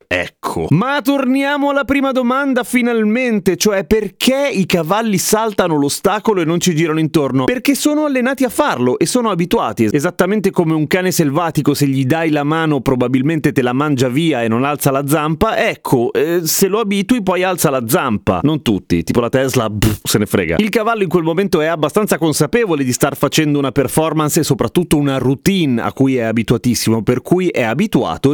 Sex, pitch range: male, 130-190 Hz